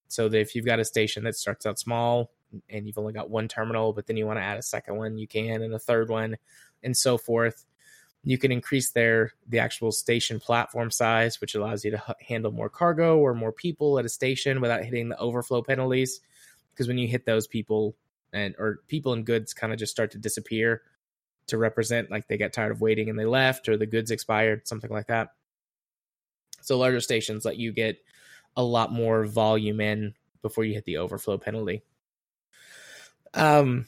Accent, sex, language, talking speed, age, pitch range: American, male, English, 205 wpm, 20-39, 110-130 Hz